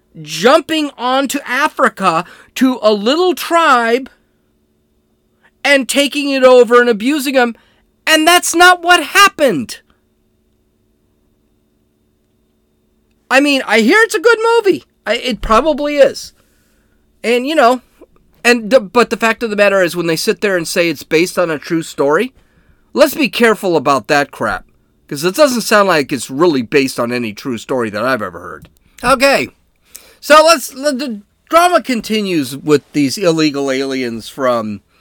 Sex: male